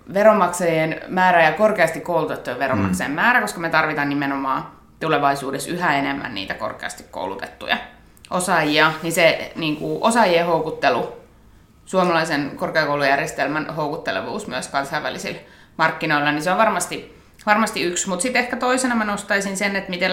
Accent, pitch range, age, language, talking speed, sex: native, 150-185 Hz, 20-39, Finnish, 130 wpm, female